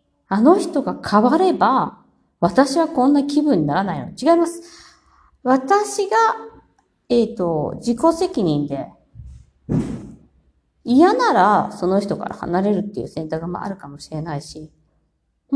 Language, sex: Japanese, female